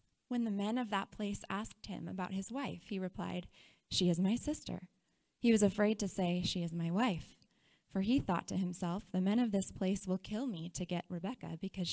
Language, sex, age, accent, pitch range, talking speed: English, female, 20-39, American, 180-220 Hz, 215 wpm